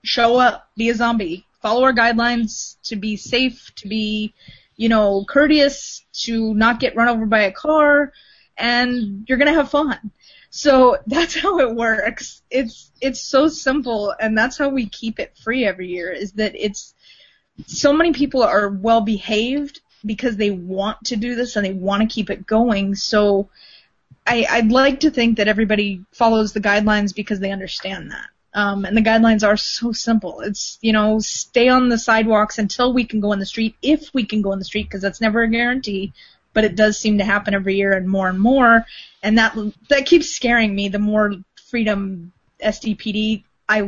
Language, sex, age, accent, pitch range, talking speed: English, female, 20-39, American, 205-250 Hz, 190 wpm